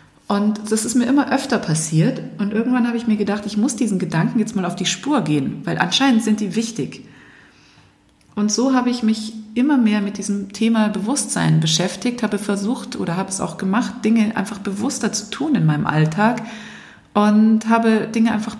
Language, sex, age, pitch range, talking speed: German, female, 30-49, 195-235 Hz, 190 wpm